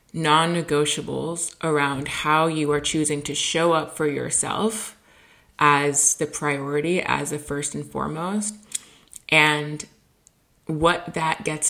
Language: English